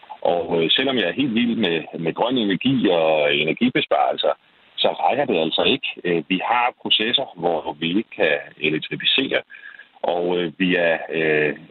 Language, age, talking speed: Danish, 40-59, 150 wpm